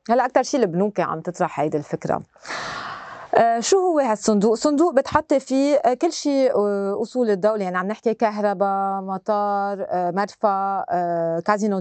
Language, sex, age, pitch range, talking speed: Arabic, female, 30-49, 200-265 Hz, 130 wpm